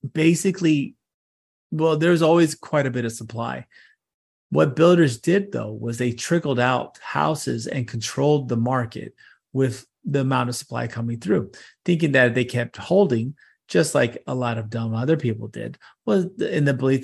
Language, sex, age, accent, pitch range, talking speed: English, male, 30-49, American, 120-150 Hz, 165 wpm